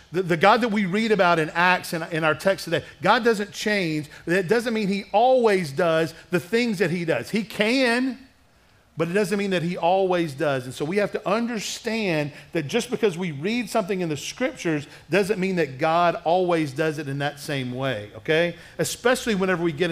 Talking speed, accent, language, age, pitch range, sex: 210 wpm, American, English, 40-59, 145-195 Hz, male